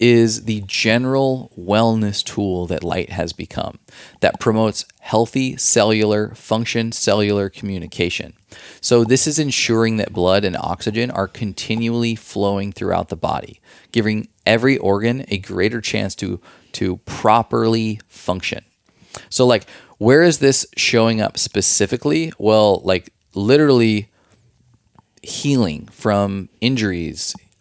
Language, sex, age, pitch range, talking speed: English, male, 20-39, 100-115 Hz, 115 wpm